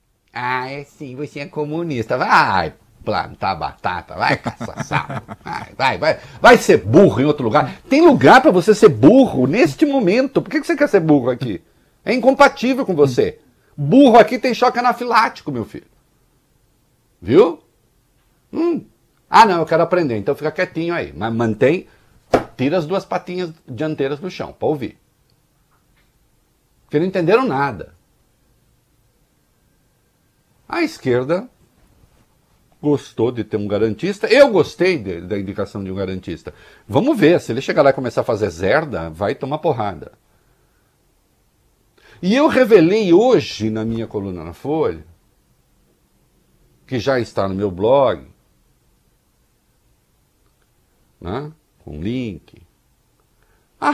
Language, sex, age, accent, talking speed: Portuguese, male, 60-79, Brazilian, 130 wpm